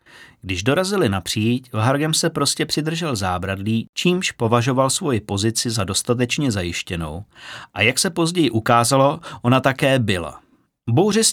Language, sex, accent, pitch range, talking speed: Czech, male, native, 105-145 Hz, 140 wpm